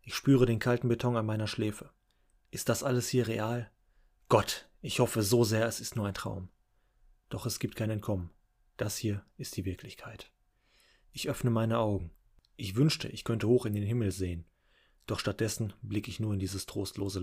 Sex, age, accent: male, 30-49, German